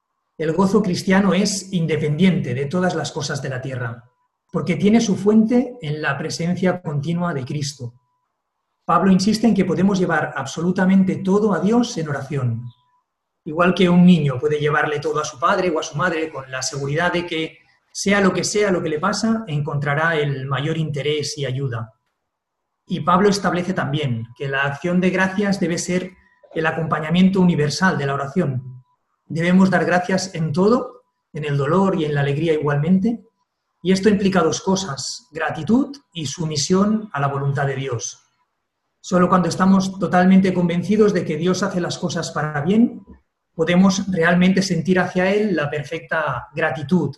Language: English